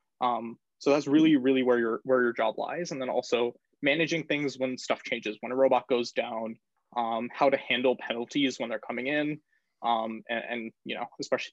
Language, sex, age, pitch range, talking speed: English, male, 20-39, 115-145 Hz, 205 wpm